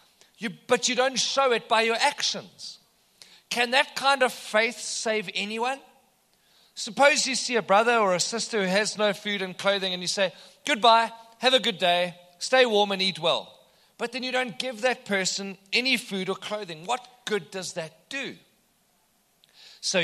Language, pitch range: English, 175-230 Hz